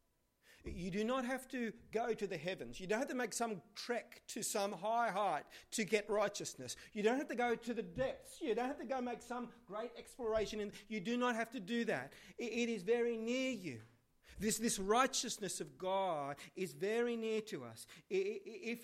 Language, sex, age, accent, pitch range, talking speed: English, male, 40-59, Australian, 190-245 Hz, 205 wpm